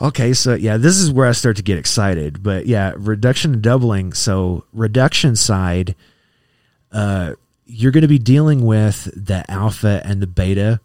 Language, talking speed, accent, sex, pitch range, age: English, 170 wpm, American, male, 95-115 Hz, 30-49